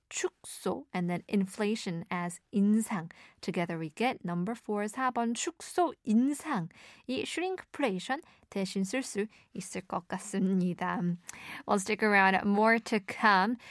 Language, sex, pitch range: Korean, female, 190-295 Hz